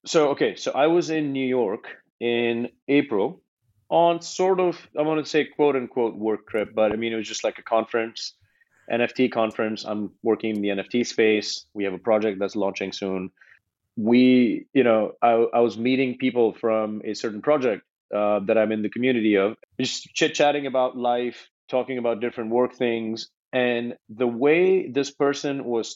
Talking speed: 185 wpm